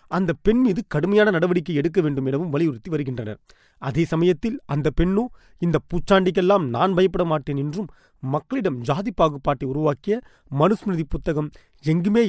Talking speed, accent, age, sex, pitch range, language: 130 wpm, native, 30-49, male, 145-190 Hz, Tamil